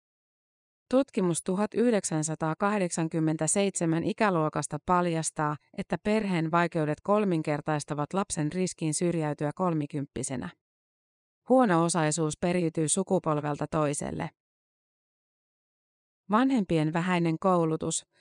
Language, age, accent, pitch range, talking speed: Finnish, 30-49, native, 155-190 Hz, 65 wpm